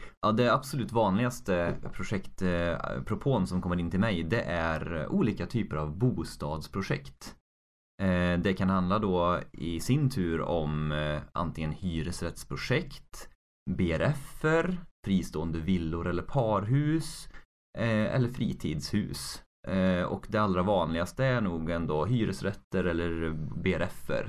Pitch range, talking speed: 85-115 Hz, 105 wpm